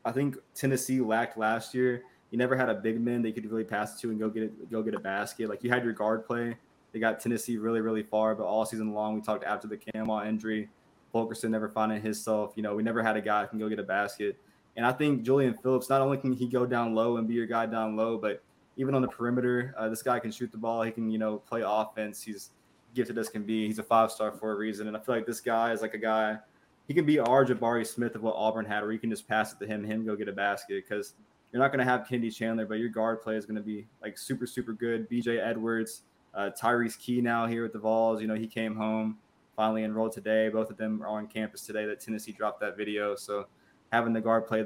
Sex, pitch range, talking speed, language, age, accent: male, 110-120 Hz, 270 wpm, English, 20-39, American